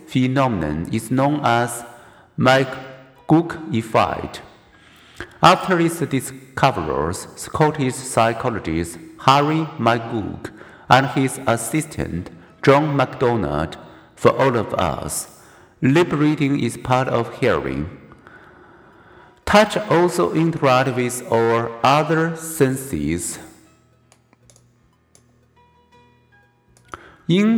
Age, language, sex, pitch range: 50-69, Chinese, male, 115-150 Hz